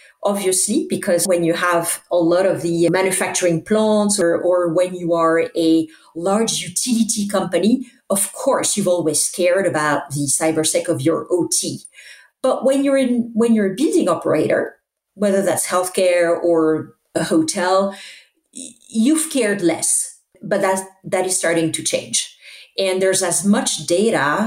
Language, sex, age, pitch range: English, female, 40-59, 160-205 Hz